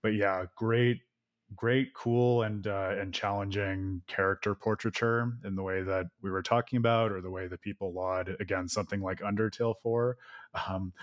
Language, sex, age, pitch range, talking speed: English, male, 20-39, 95-110 Hz, 170 wpm